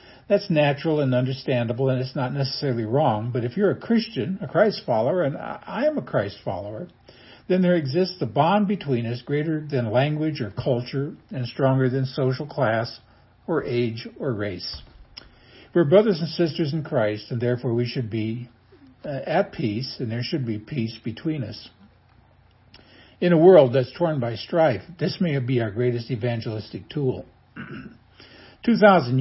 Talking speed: 160 wpm